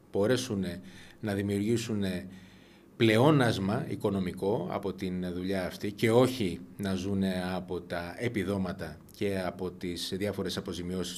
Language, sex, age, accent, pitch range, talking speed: Greek, male, 30-49, native, 95-125 Hz, 120 wpm